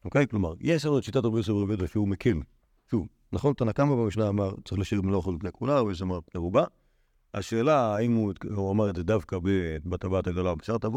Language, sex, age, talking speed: Hebrew, male, 50-69, 190 wpm